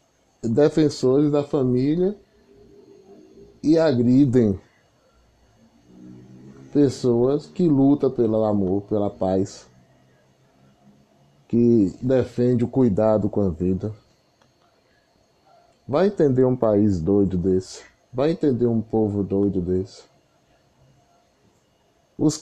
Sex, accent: male, Brazilian